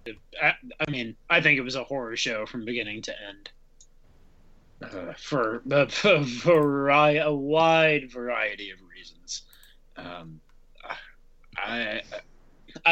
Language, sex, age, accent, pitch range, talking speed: English, male, 30-49, American, 130-170 Hz, 125 wpm